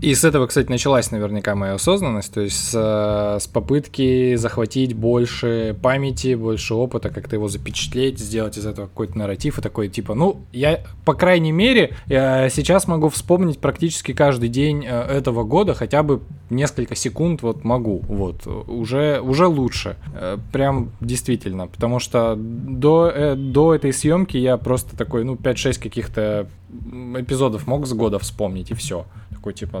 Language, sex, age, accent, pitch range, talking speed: Russian, male, 20-39, native, 105-135 Hz, 150 wpm